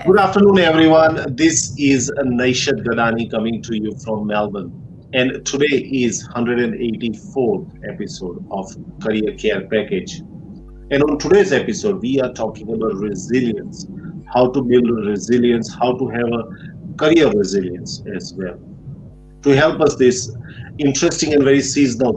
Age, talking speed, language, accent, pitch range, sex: 50-69, 140 wpm, English, Indian, 110-145 Hz, male